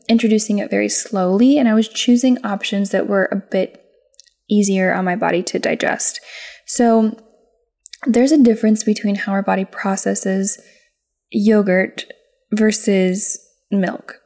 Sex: female